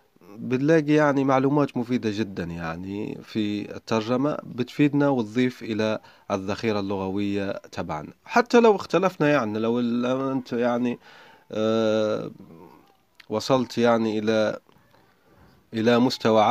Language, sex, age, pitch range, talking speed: Arabic, male, 30-49, 105-135 Hz, 100 wpm